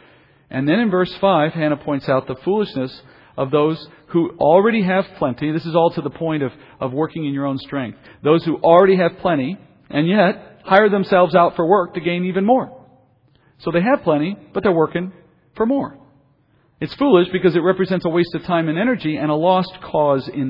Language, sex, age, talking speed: English, male, 40-59, 205 wpm